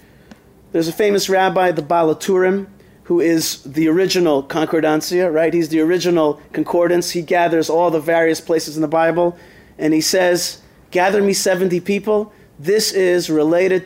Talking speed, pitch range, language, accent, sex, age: 150 wpm, 155-185 Hz, English, American, male, 40-59